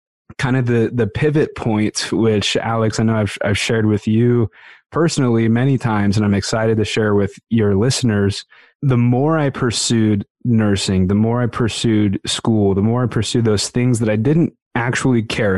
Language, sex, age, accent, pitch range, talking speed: English, male, 20-39, American, 105-120 Hz, 180 wpm